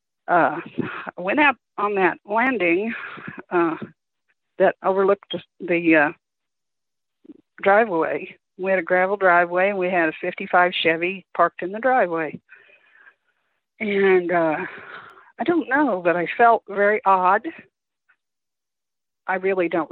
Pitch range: 180-220 Hz